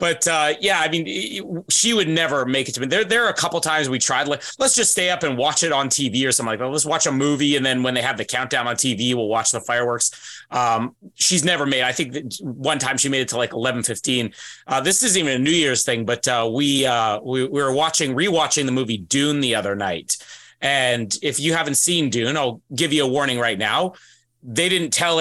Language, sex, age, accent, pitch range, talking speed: English, male, 30-49, American, 130-175 Hz, 250 wpm